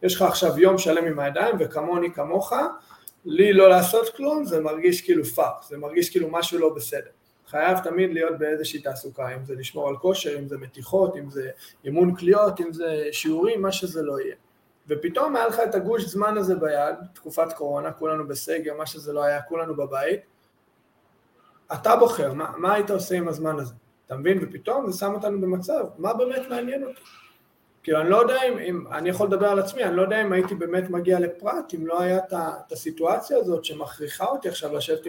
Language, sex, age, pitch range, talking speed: Hebrew, male, 30-49, 160-210 Hz, 195 wpm